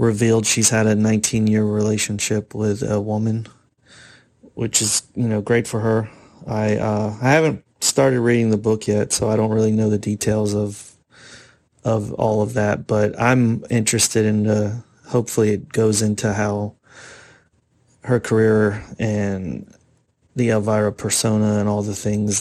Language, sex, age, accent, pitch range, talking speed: English, male, 30-49, American, 105-120 Hz, 155 wpm